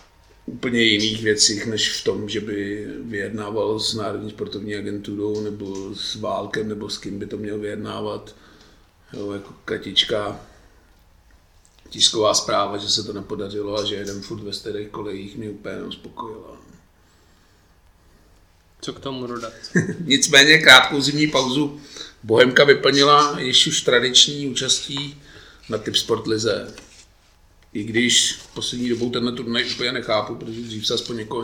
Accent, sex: native, male